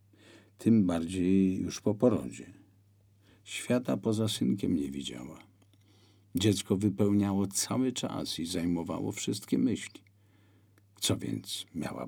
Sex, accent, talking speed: male, native, 105 wpm